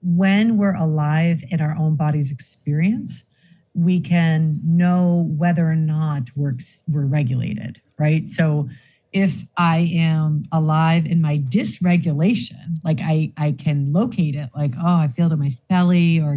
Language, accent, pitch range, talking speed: English, American, 150-175 Hz, 150 wpm